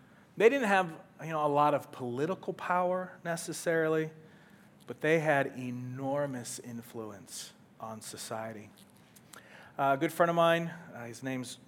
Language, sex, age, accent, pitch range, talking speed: English, male, 40-59, American, 125-160 Hz, 130 wpm